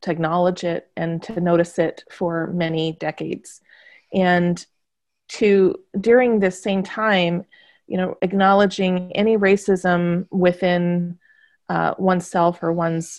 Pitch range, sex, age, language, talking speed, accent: 170-195 Hz, female, 30-49, English, 120 wpm, American